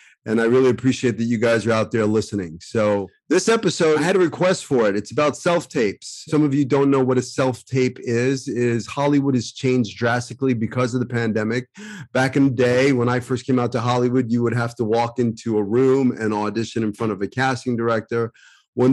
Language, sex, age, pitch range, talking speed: English, male, 30-49, 115-135 Hz, 220 wpm